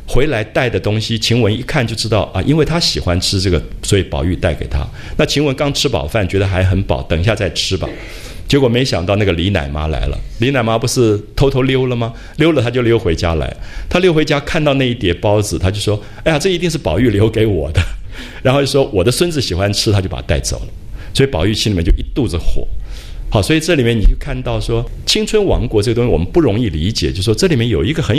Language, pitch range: Japanese, 90-120 Hz